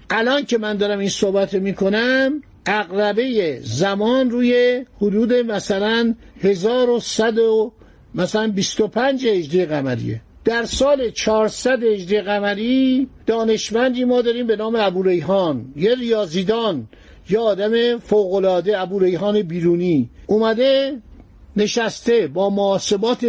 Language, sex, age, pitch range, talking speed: Persian, male, 60-79, 195-240 Hz, 110 wpm